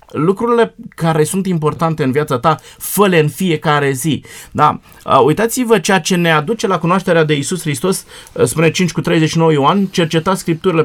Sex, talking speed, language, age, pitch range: male, 160 wpm, Romanian, 30-49, 140-180 Hz